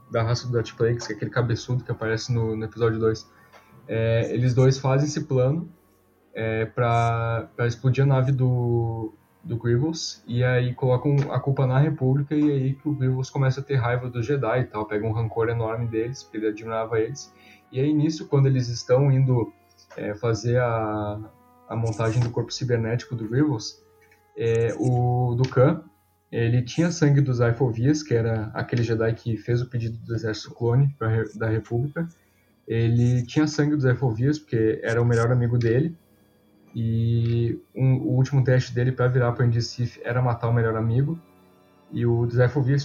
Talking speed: 175 wpm